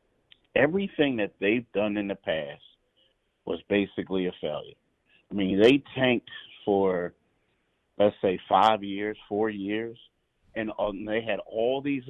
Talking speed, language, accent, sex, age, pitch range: 135 wpm, English, American, male, 30-49, 100-115 Hz